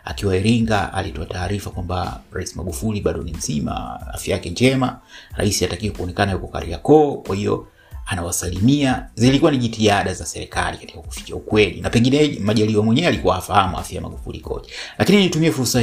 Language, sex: Swahili, male